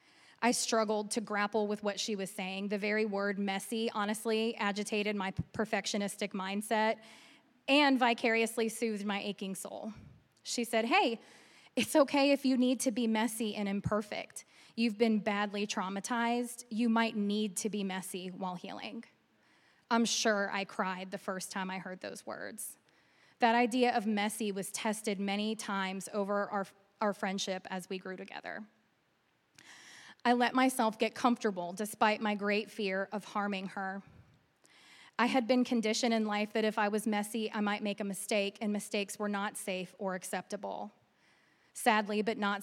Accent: American